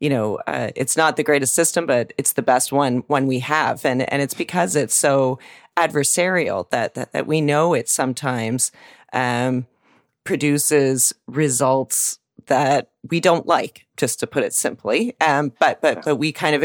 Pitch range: 130-170 Hz